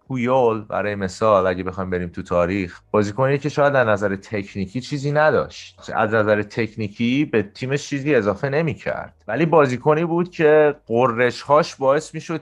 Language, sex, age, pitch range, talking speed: Persian, male, 30-49, 105-155 Hz, 160 wpm